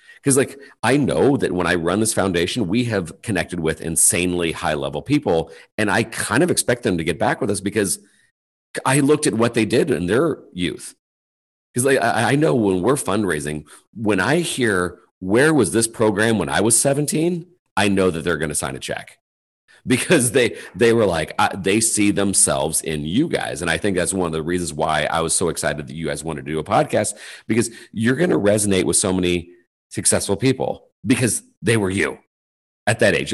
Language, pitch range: English, 80-110 Hz